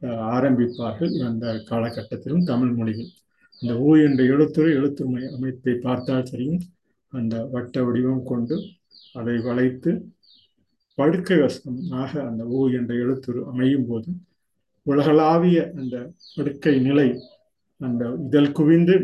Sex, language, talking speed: male, Tamil, 110 wpm